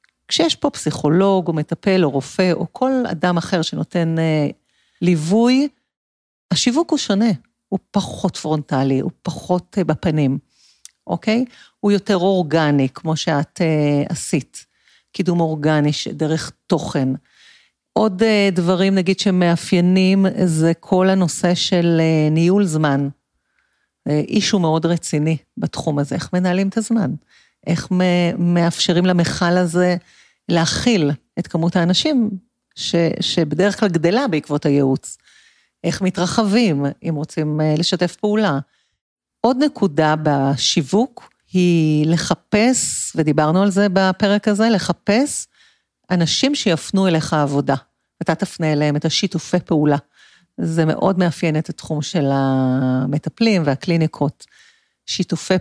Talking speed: 115 wpm